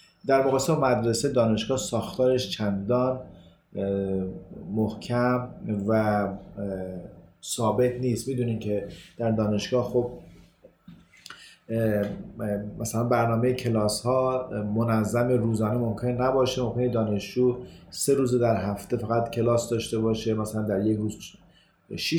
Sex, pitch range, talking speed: male, 110-130 Hz, 105 wpm